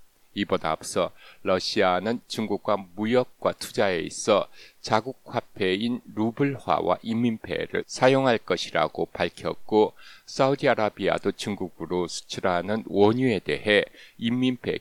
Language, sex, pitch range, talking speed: English, male, 95-120 Hz, 80 wpm